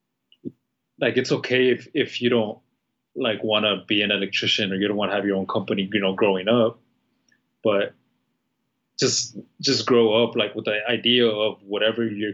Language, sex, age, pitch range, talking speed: English, male, 20-39, 100-120 Hz, 185 wpm